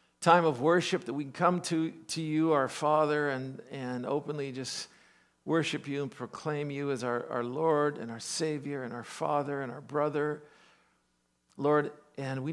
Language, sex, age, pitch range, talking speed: English, male, 50-69, 125-165 Hz, 175 wpm